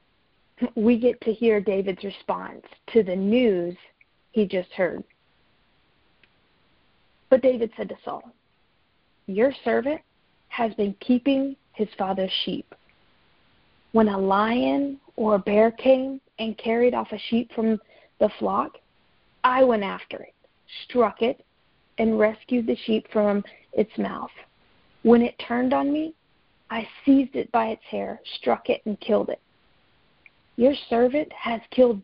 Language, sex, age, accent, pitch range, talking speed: English, female, 40-59, American, 215-260 Hz, 135 wpm